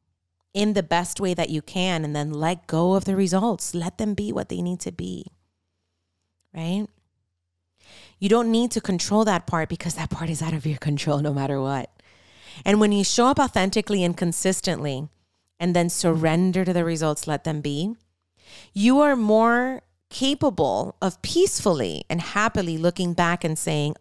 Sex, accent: female, American